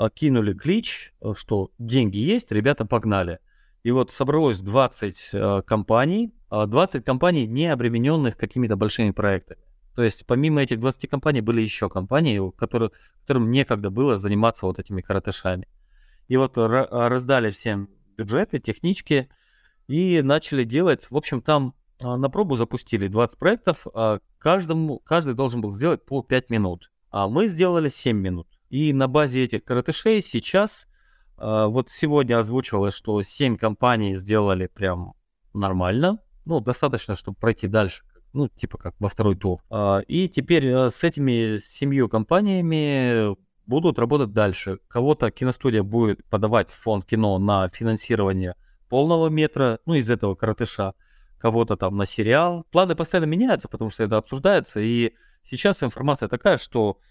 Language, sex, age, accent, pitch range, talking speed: Russian, male, 20-39, native, 105-145 Hz, 135 wpm